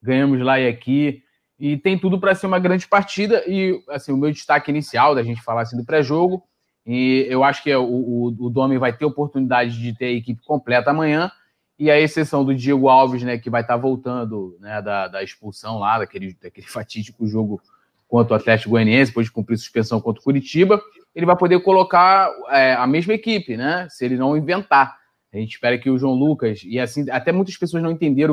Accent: Brazilian